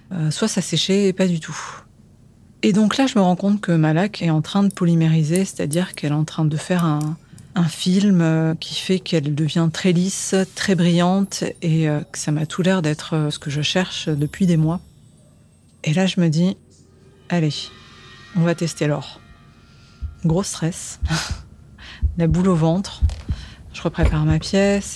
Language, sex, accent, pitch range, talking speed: French, female, French, 110-180 Hz, 180 wpm